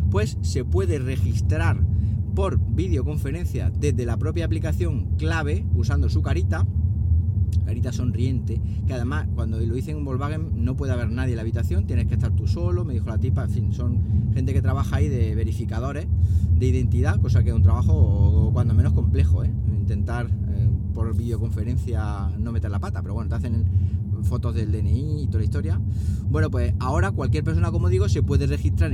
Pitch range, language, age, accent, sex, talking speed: 90-100 Hz, Spanish, 30-49, Spanish, male, 185 wpm